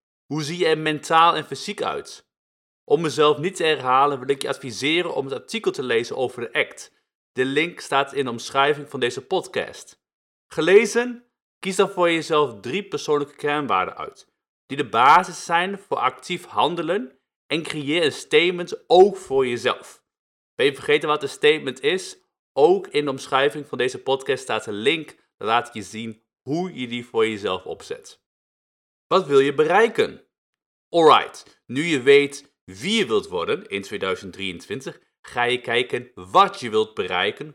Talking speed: 170 wpm